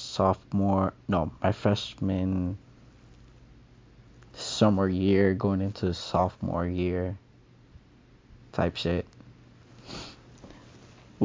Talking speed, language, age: 70 wpm, English, 20-39